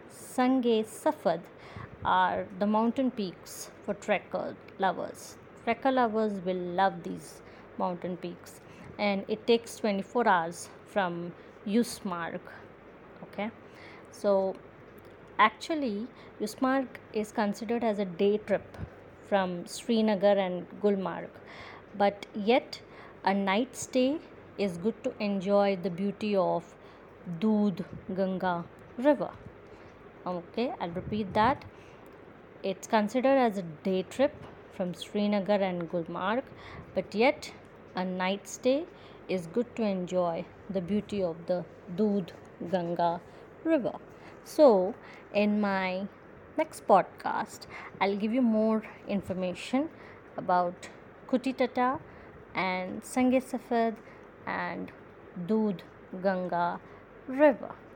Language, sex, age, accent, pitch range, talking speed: Hindi, female, 20-39, native, 185-235 Hz, 105 wpm